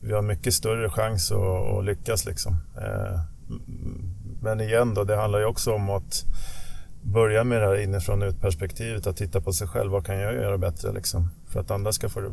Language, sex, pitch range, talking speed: Swedish, male, 95-110 Hz, 205 wpm